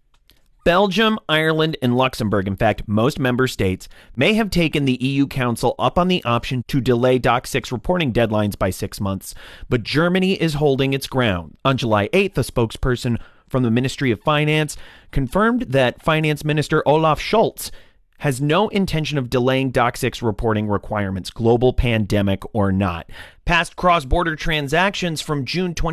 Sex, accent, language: male, American, English